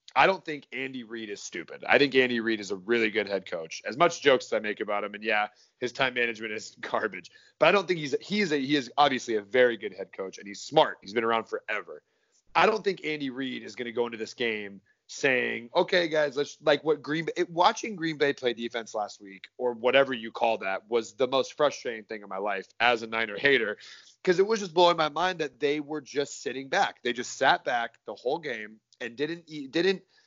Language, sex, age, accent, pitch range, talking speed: English, male, 30-49, American, 115-155 Hz, 245 wpm